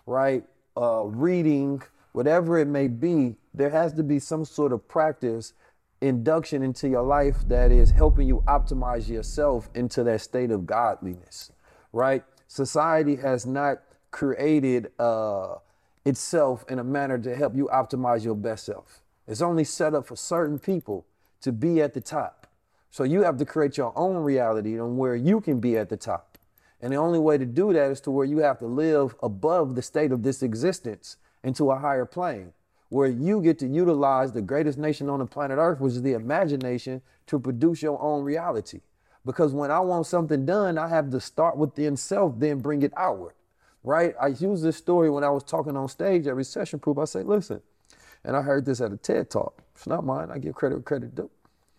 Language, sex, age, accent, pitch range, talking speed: English, male, 30-49, American, 125-155 Hz, 195 wpm